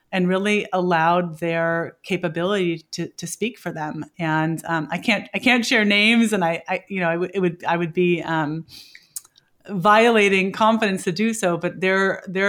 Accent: American